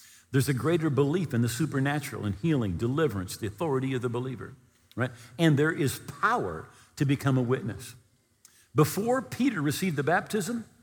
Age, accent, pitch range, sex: 50-69, American, 115-175 Hz, male